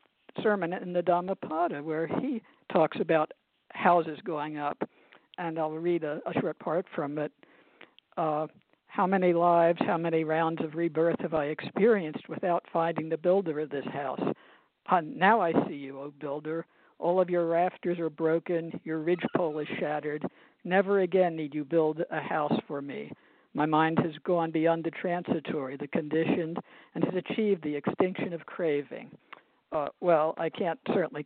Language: English